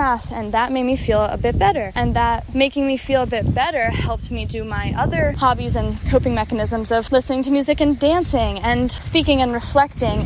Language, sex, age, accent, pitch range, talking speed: English, female, 20-39, American, 220-255 Hz, 205 wpm